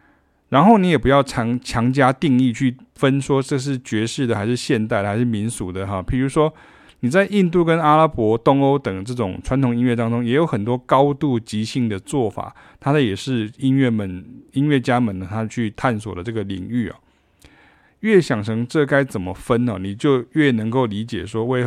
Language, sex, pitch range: Chinese, male, 110-135 Hz